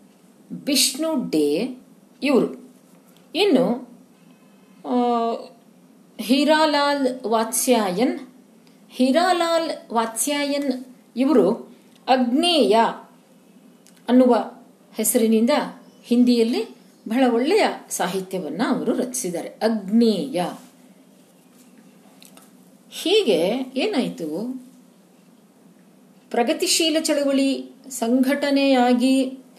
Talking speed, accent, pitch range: 45 wpm, native, 220-265 Hz